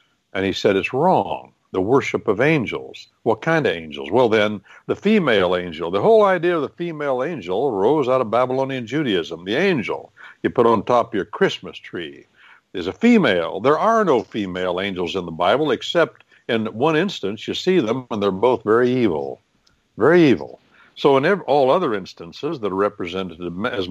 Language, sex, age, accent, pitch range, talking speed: English, male, 60-79, American, 90-130 Hz, 185 wpm